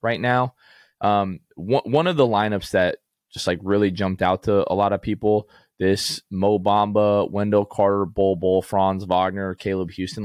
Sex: male